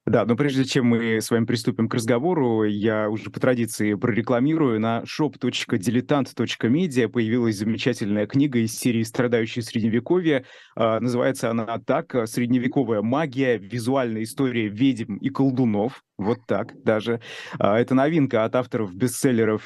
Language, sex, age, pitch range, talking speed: Russian, male, 30-49, 115-135 Hz, 125 wpm